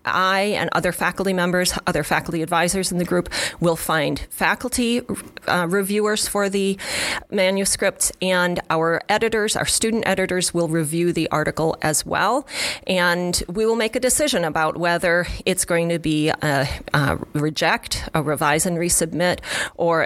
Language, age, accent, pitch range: English, 30-49, American, 165-200 Hz